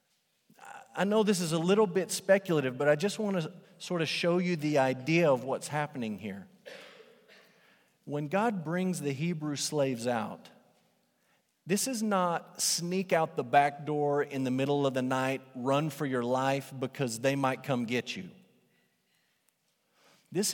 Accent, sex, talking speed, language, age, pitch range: American, male, 160 wpm, English, 40-59, 135-185 Hz